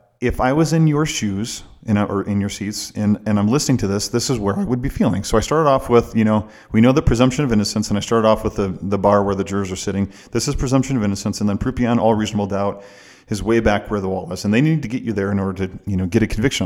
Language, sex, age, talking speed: English, male, 40-59, 305 wpm